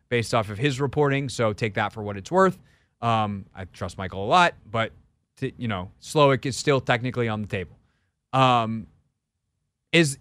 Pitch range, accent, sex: 120-155 Hz, American, male